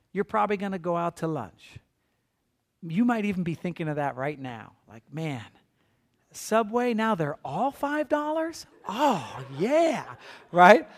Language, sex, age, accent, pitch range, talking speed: English, male, 40-59, American, 150-220 Hz, 150 wpm